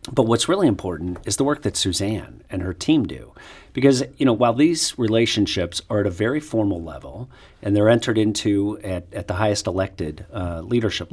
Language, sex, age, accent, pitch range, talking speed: English, male, 50-69, American, 85-110 Hz, 195 wpm